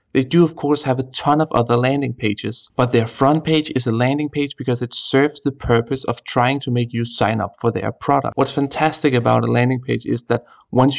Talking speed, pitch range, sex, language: 235 wpm, 120-145 Hz, male, English